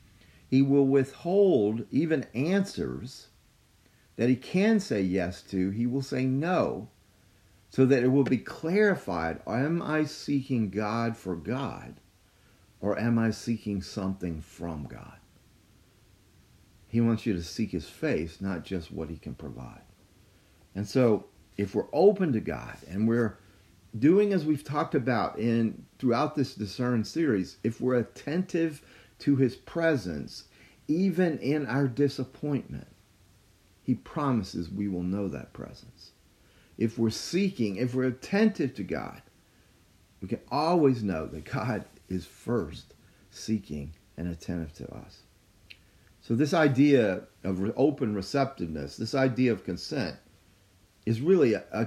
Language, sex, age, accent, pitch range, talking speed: English, male, 50-69, American, 95-135 Hz, 135 wpm